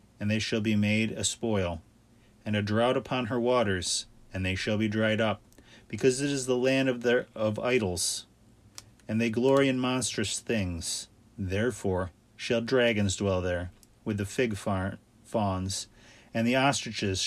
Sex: male